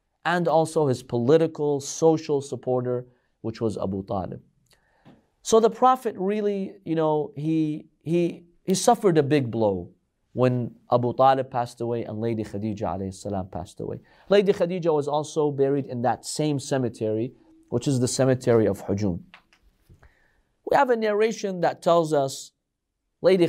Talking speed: 145 wpm